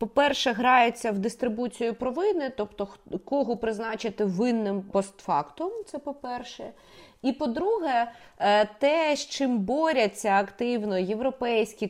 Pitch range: 200-270 Hz